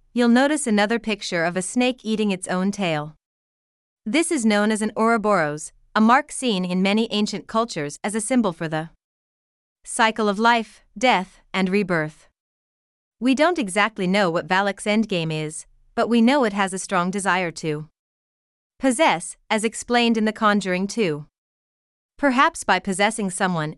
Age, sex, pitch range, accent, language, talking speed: 30-49, female, 180-230 Hz, American, English, 160 wpm